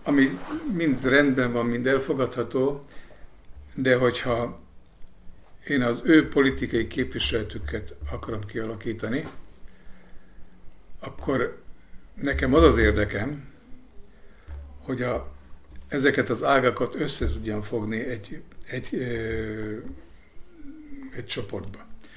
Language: Hungarian